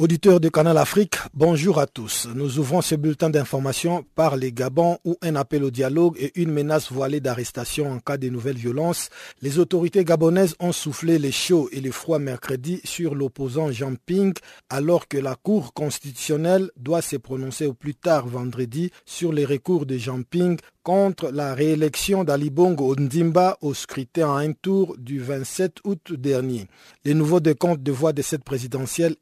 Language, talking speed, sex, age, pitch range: French, 180 wpm, male, 50-69, 135-170 Hz